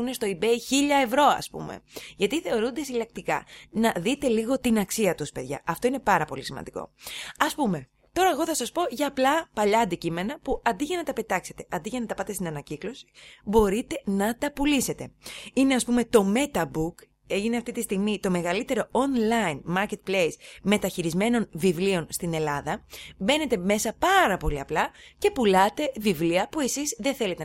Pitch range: 175-245 Hz